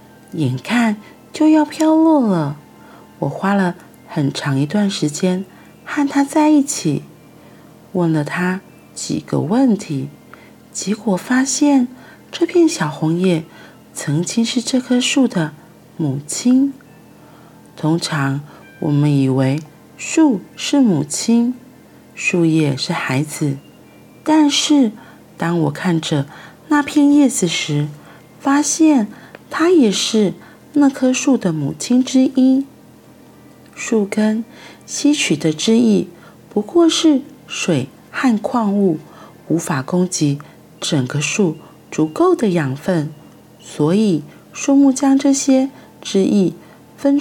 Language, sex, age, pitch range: Chinese, female, 40-59, 160-265 Hz